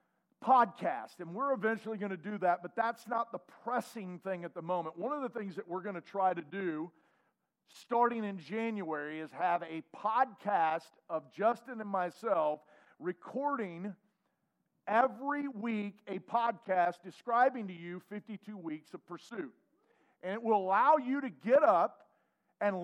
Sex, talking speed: male, 160 wpm